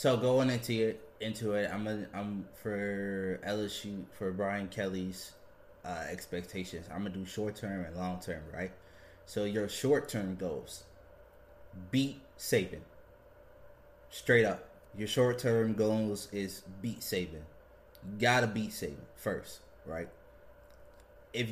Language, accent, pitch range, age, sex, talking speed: English, American, 100-120 Hz, 20-39, male, 135 wpm